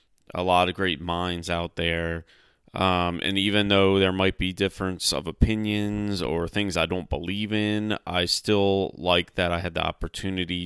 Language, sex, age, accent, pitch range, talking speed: English, male, 30-49, American, 85-100 Hz, 175 wpm